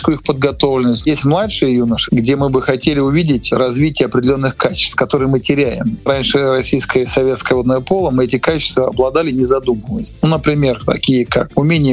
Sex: male